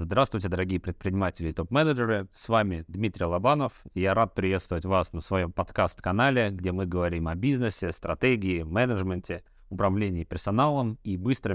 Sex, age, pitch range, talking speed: male, 30-49, 85-120 Hz, 140 wpm